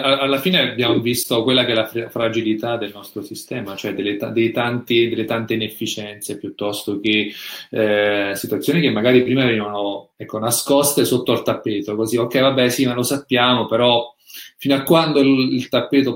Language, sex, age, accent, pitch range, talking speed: Italian, male, 30-49, native, 105-130 Hz, 175 wpm